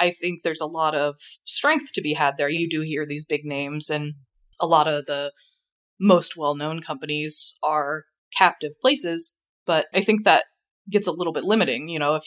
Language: English